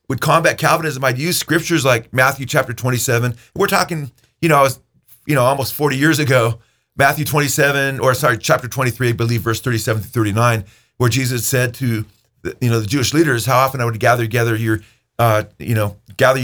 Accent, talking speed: American, 195 wpm